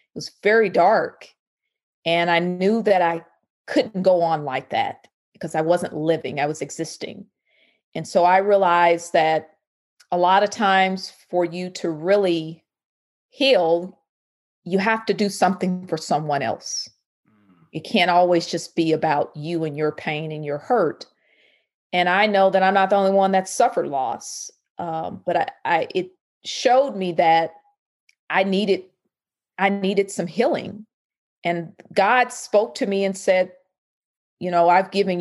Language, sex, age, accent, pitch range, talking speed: English, female, 40-59, American, 170-210 Hz, 160 wpm